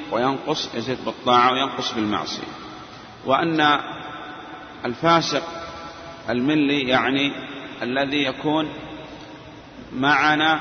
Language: Arabic